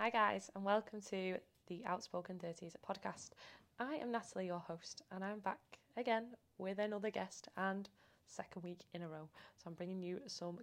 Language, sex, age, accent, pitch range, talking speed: English, female, 20-39, British, 175-210 Hz, 180 wpm